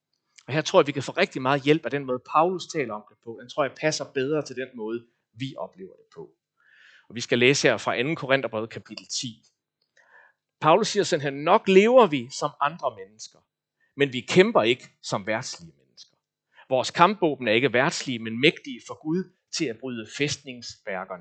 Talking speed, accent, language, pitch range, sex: 200 wpm, native, Danish, 130-185 Hz, male